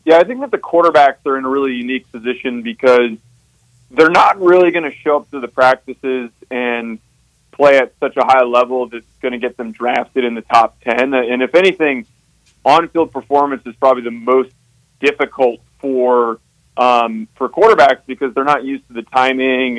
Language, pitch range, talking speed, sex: English, 120-135 Hz, 185 wpm, male